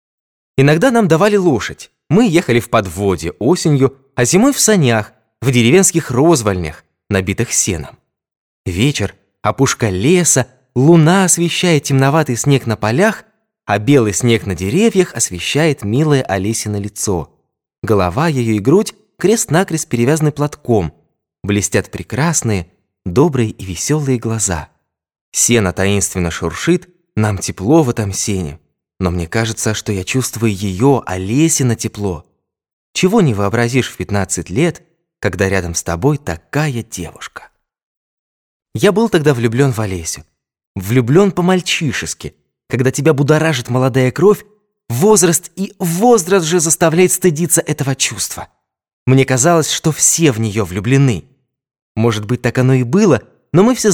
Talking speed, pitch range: 130 wpm, 100-160 Hz